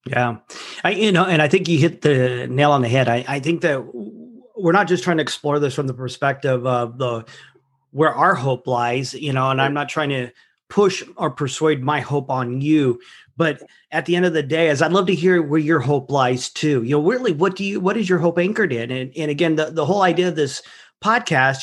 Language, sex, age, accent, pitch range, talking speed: English, male, 40-59, American, 140-180 Hz, 240 wpm